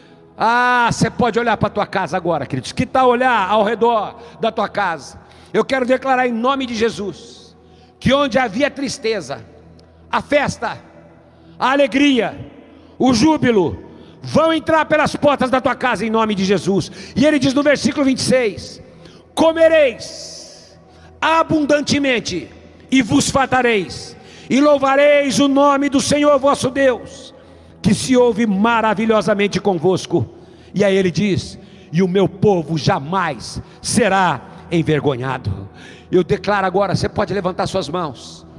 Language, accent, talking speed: Portuguese, Brazilian, 140 wpm